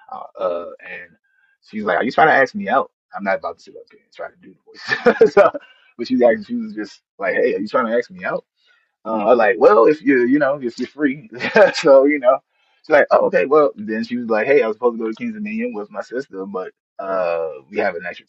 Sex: male